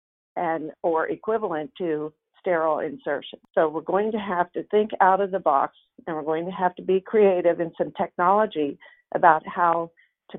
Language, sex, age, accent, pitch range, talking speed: English, female, 50-69, American, 165-195 Hz, 180 wpm